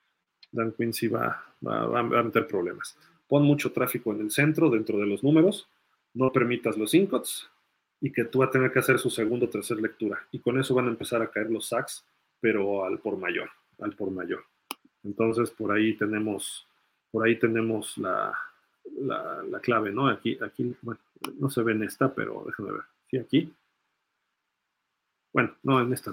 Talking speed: 185 wpm